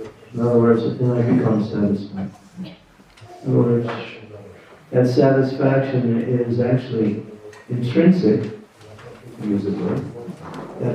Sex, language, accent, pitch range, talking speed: male, English, American, 105-125 Hz, 115 wpm